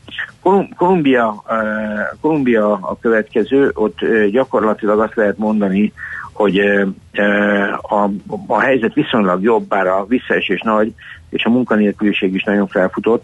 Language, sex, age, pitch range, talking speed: Hungarian, male, 60-79, 100-120 Hz, 120 wpm